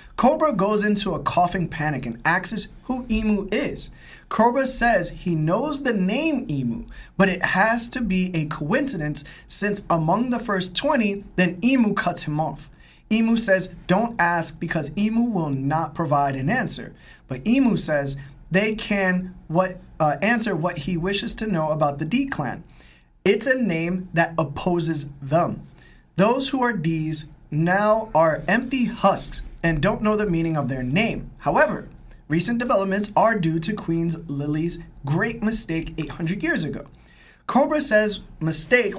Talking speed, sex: 155 wpm, male